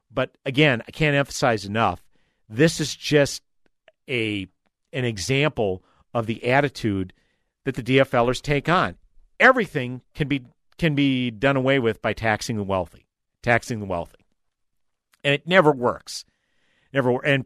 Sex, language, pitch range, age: male, English, 120-165 Hz, 50-69